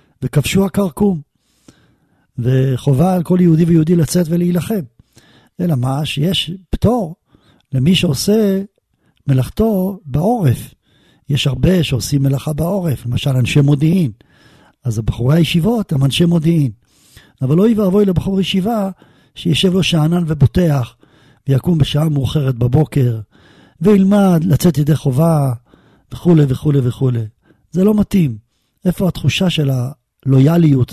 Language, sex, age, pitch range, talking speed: Hebrew, male, 50-69, 135-180 Hz, 115 wpm